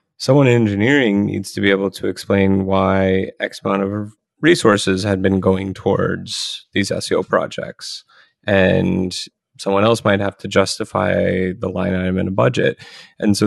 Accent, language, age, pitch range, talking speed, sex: American, English, 20-39, 95-105 Hz, 160 wpm, male